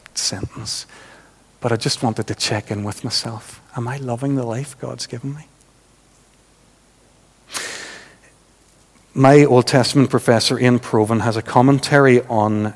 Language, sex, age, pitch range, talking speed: English, male, 50-69, 115-140 Hz, 130 wpm